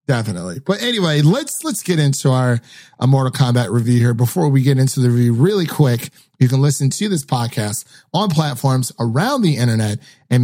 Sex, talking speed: male, 190 wpm